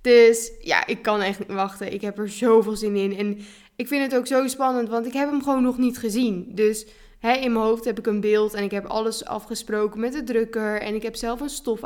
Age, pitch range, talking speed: 20-39, 215-260 Hz, 260 wpm